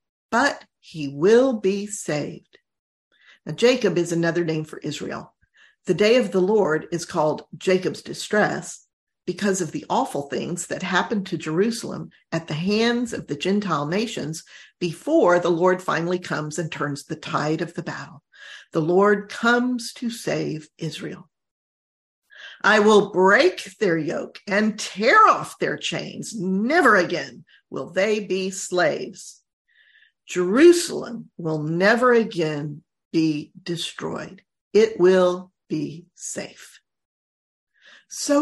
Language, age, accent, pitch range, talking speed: English, 50-69, American, 165-235 Hz, 130 wpm